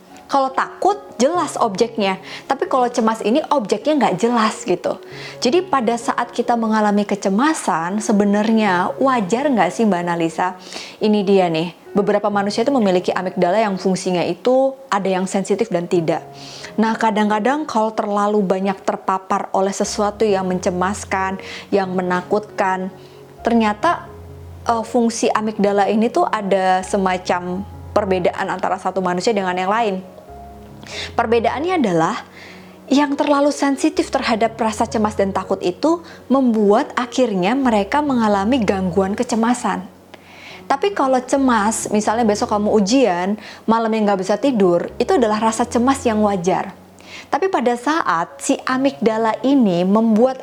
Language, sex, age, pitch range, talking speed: Indonesian, female, 20-39, 195-240 Hz, 130 wpm